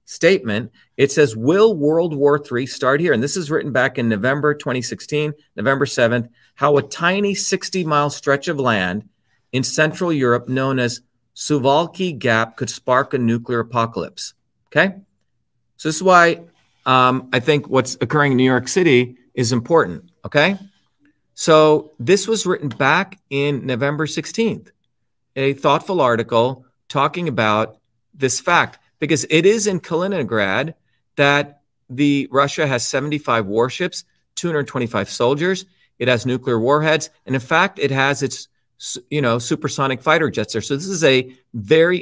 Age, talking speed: 40-59, 150 wpm